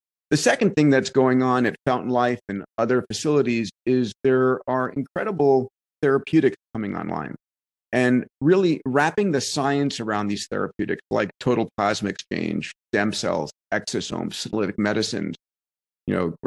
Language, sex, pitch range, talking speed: English, male, 110-135 Hz, 140 wpm